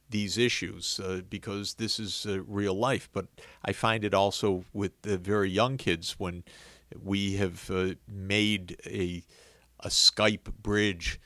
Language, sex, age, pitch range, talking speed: English, male, 50-69, 90-110 Hz, 150 wpm